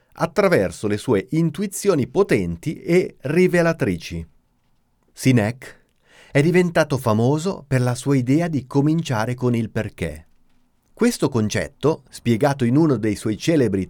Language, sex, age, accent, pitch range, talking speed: Italian, male, 40-59, native, 110-165 Hz, 120 wpm